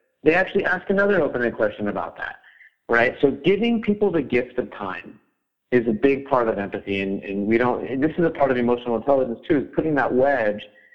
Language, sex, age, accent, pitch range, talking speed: English, male, 30-49, American, 110-140 Hz, 210 wpm